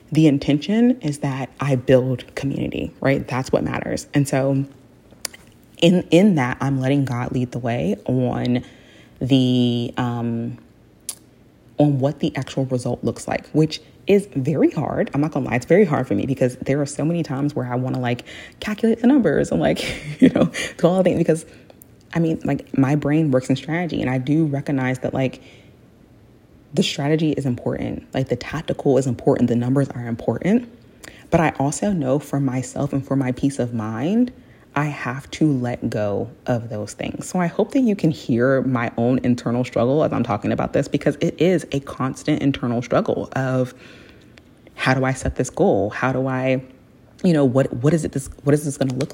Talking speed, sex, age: 195 wpm, female, 20-39